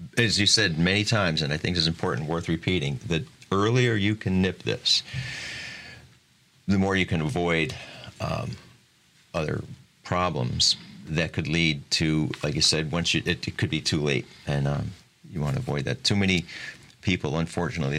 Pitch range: 80-100 Hz